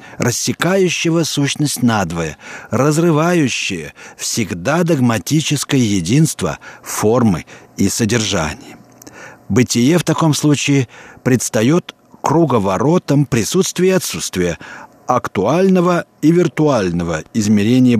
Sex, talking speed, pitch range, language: male, 75 wpm, 115-155 Hz, Russian